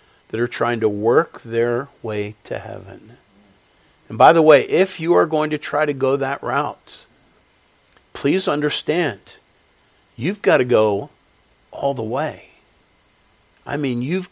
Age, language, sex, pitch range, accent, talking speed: 50-69, English, male, 115-160 Hz, American, 145 wpm